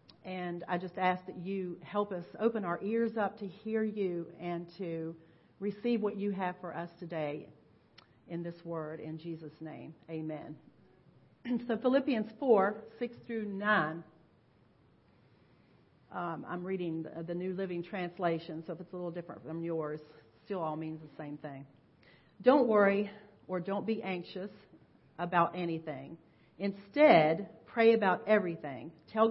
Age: 40-59